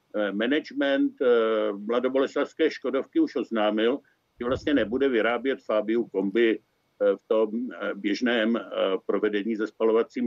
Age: 60-79